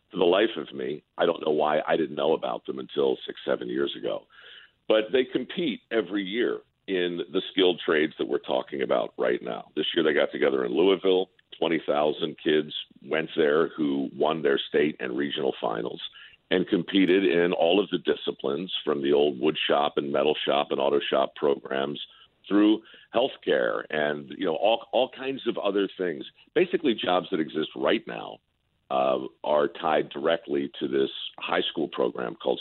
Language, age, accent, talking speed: English, 50-69, American, 180 wpm